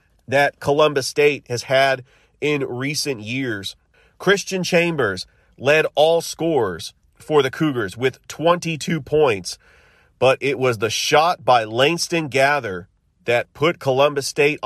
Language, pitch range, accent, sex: English, 125-155 Hz, American, male